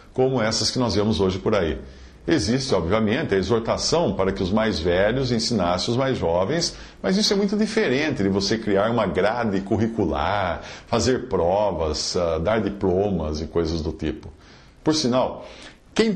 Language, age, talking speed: English, 50-69, 160 wpm